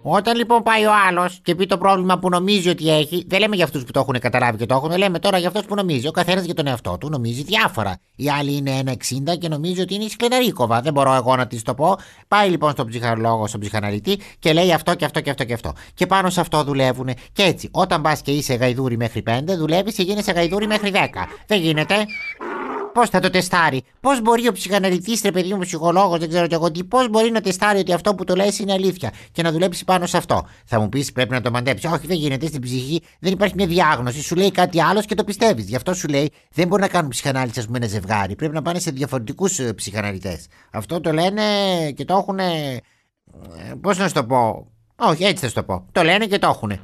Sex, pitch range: male, 130-195 Hz